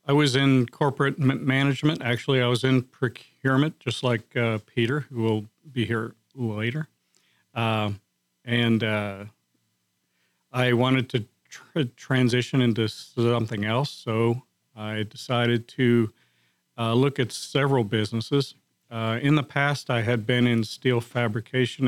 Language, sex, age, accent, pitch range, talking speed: English, male, 50-69, American, 105-130 Hz, 135 wpm